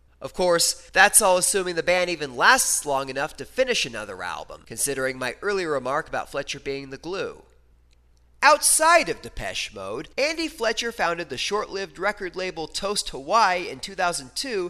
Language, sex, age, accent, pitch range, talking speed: English, male, 30-49, American, 120-195 Hz, 160 wpm